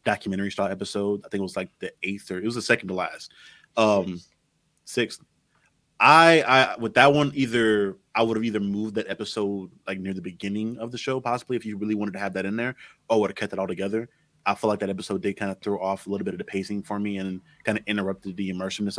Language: English